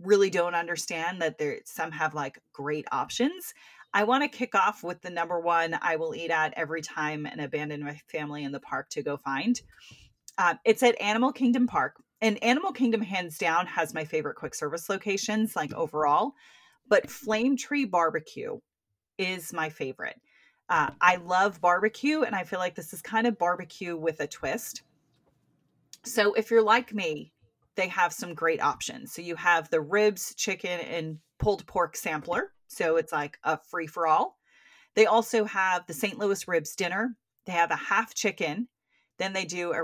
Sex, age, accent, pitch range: female, 30-49, American, 165-225 Hz